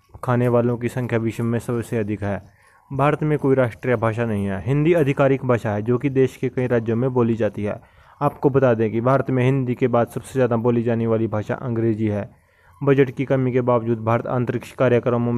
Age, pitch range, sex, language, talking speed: 20-39, 110-130 Hz, male, Hindi, 215 wpm